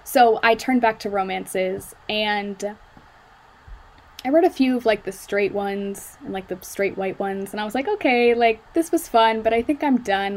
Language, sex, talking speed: English, female, 210 wpm